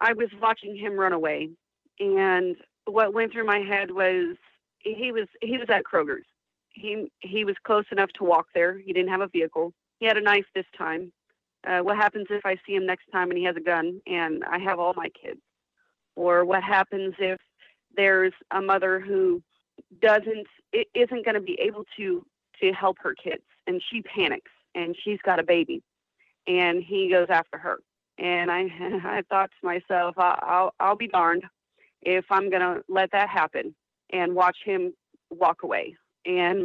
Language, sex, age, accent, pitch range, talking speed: English, female, 40-59, American, 180-220 Hz, 185 wpm